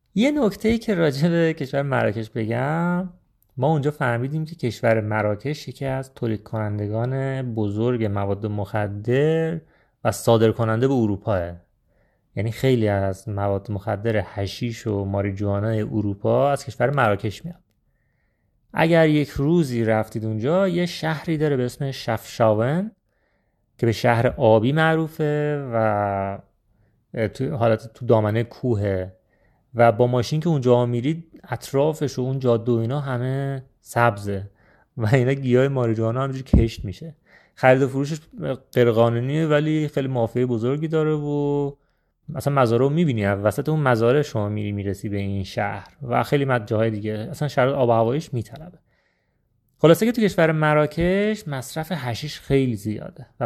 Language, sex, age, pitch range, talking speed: Persian, male, 30-49, 110-150 Hz, 140 wpm